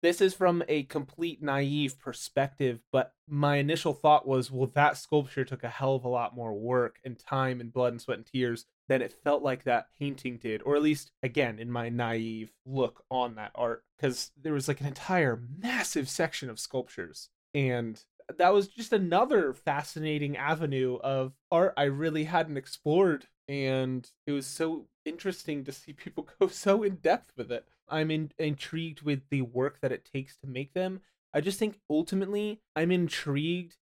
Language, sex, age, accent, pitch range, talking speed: English, male, 20-39, American, 125-155 Hz, 185 wpm